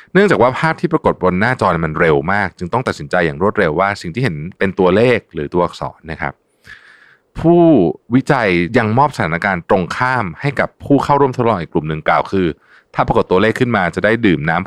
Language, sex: Thai, male